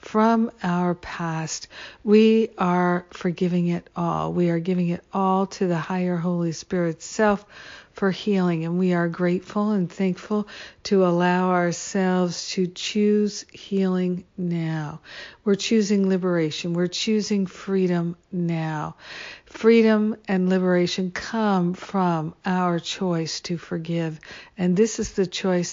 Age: 60-79